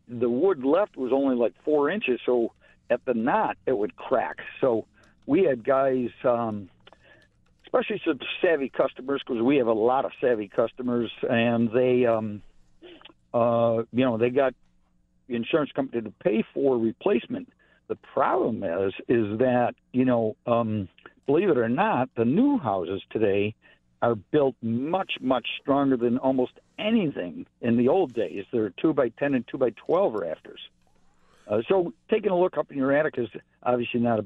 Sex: male